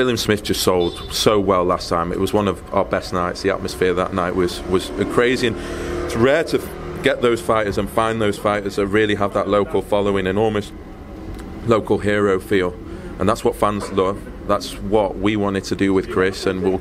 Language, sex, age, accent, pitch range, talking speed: English, male, 30-49, British, 90-100 Hz, 205 wpm